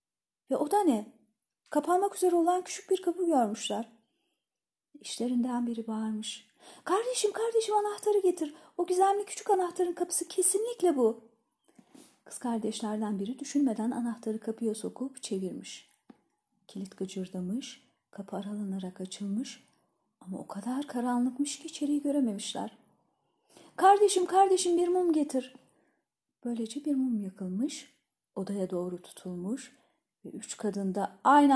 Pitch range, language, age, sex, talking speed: 220-305 Hz, Turkish, 40-59, female, 115 wpm